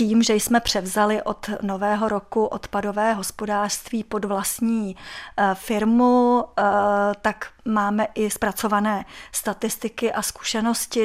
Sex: female